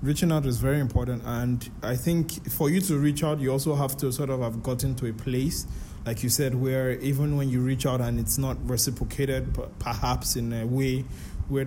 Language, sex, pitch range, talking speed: English, male, 125-150 Hz, 220 wpm